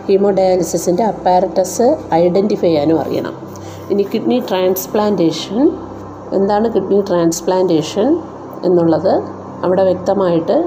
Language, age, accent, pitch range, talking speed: Malayalam, 50-69, native, 175-210 Hz, 80 wpm